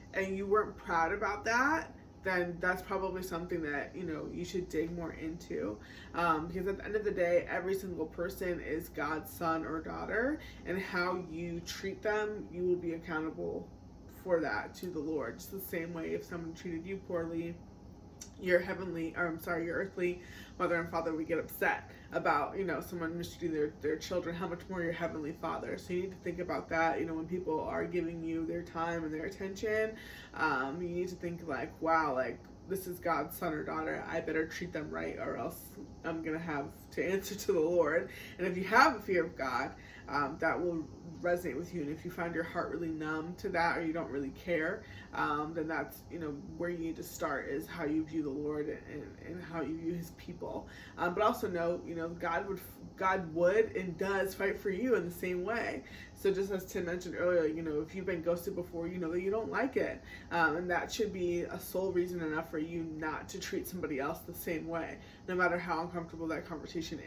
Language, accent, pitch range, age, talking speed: English, American, 160-185 Hz, 20-39, 225 wpm